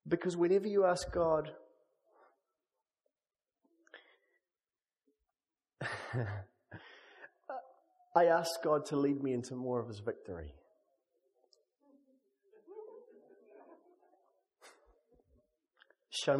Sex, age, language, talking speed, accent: male, 30-49, English, 60 wpm, British